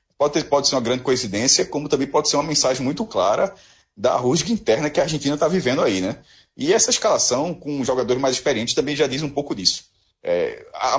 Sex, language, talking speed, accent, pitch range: male, Portuguese, 200 wpm, Brazilian, 115-165 Hz